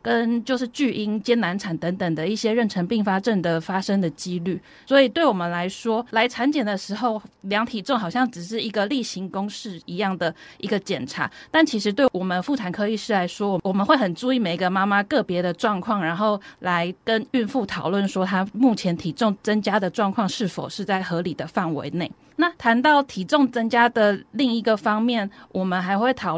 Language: Chinese